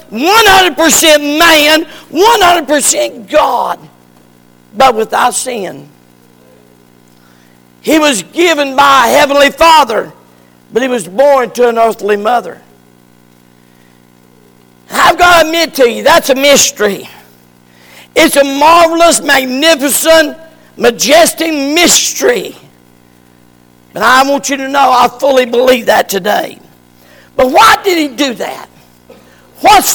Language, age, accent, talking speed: English, 50-69, American, 110 wpm